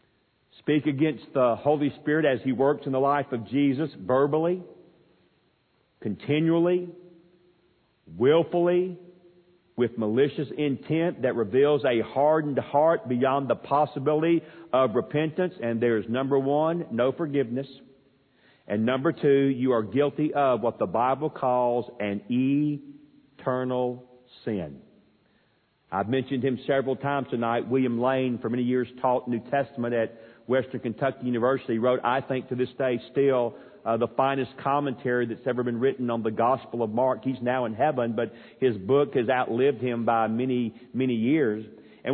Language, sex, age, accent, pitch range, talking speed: English, male, 50-69, American, 125-150 Hz, 150 wpm